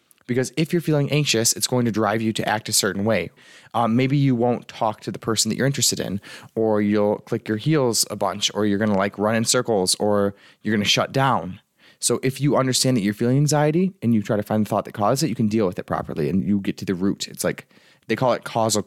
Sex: male